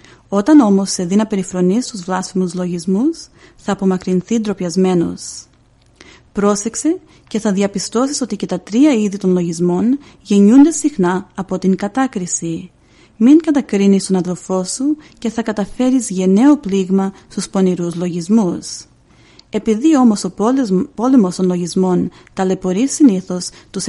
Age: 30-49